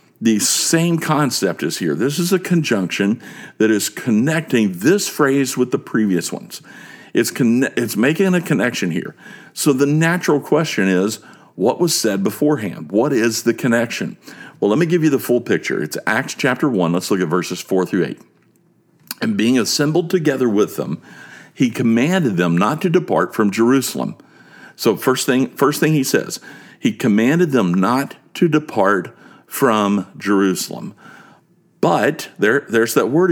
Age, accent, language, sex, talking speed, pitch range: 50-69, American, English, male, 165 wpm, 105-160 Hz